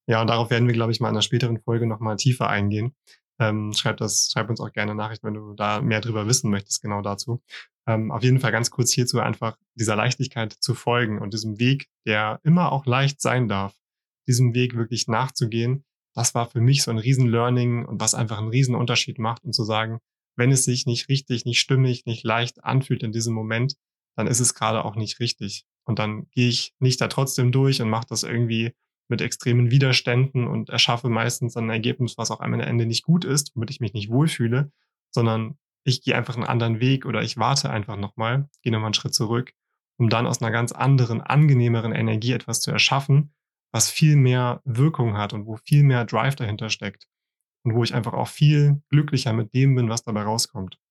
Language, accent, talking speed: German, German, 210 wpm